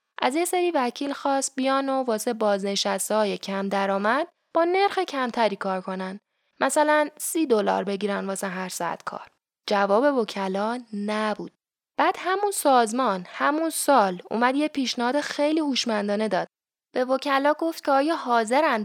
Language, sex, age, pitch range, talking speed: Persian, female, 10-29, 205-270 Hz, 140 wpm